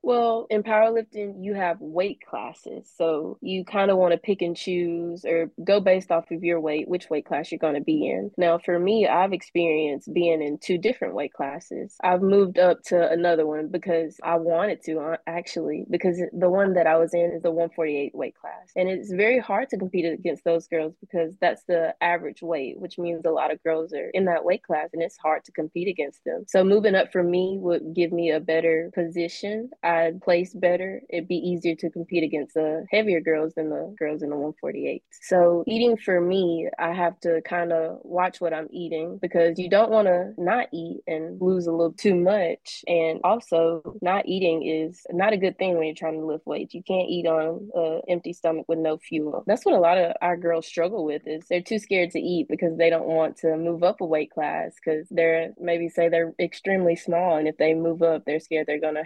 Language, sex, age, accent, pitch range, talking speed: English, female, 20-39, American, 160-180 Hz, 225 wpm